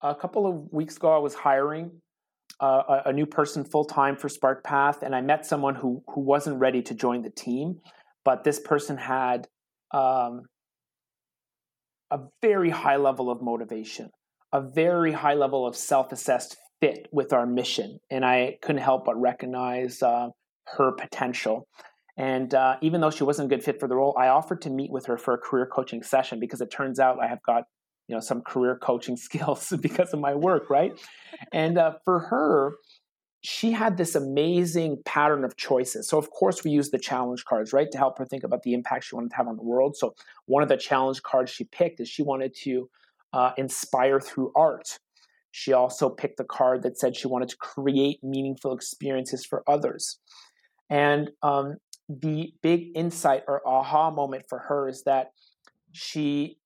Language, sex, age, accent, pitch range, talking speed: English, male, 30-49, American, 130-150 Hz, 185 wpm